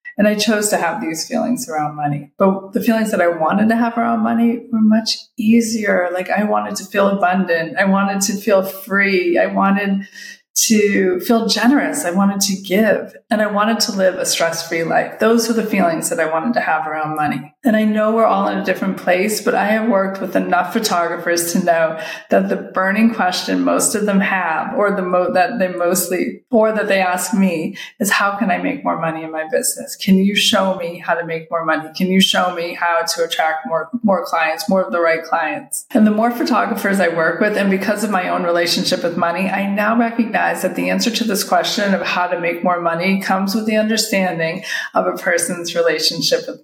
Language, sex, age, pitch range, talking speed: English, female, 30-49, 175-225 Hz, 220 wpm